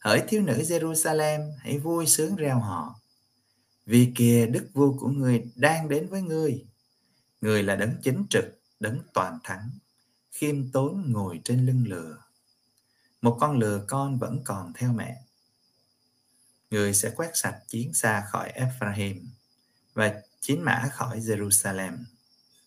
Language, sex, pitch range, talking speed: Vietnamese, male, 115-130 Hz, 145 wpm